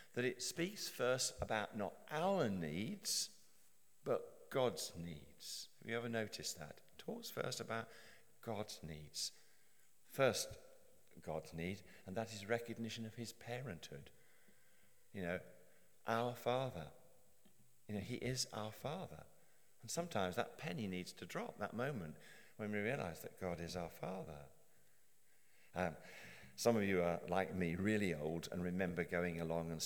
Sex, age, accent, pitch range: male, 50-69, British, 85-120 Hz